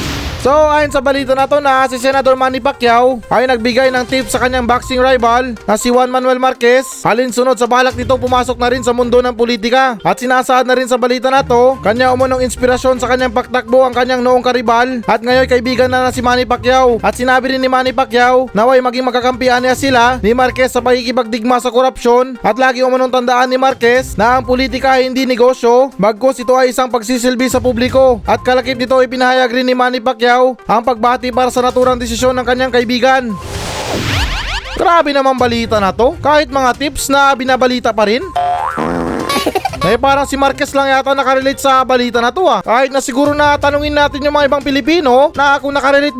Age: 20-39